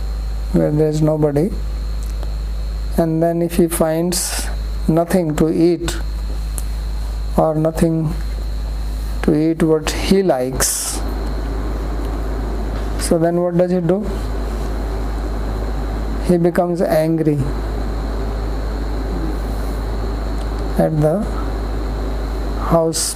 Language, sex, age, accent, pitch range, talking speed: English, male, 50-69, Indian, 155-175 Hz, 80 wpm